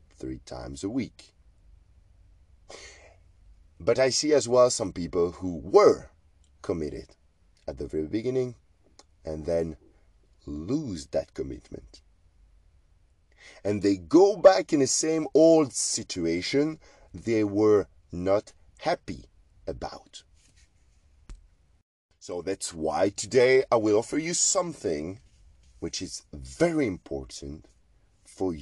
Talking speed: 105 wpm